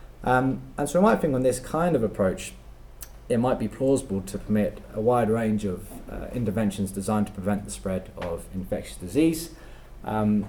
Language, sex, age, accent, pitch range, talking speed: English, male, 20-39, British, 100-125 Hz, 185 wpm